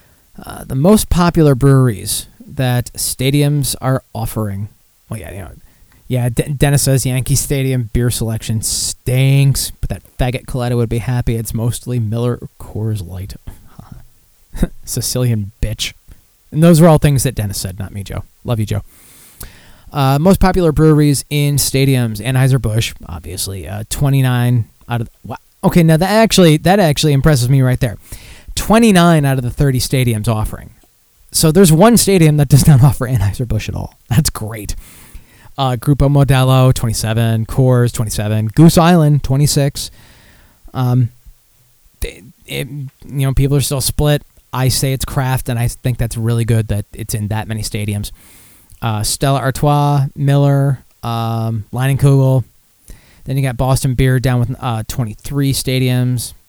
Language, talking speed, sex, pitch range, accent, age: English, 155 wpm, male, 110-140 Hz, American, 20-39